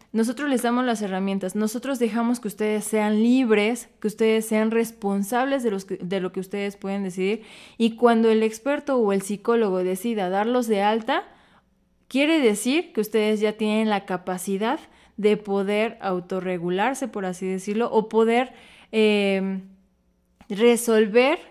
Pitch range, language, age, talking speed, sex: 195-240 Hz, Spanish, 20-39, 150 wpm, female